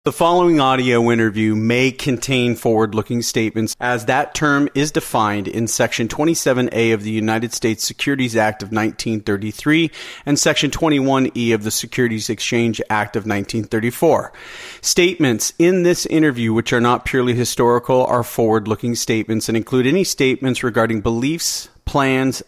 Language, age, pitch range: English, 40-59, 115-145 Hz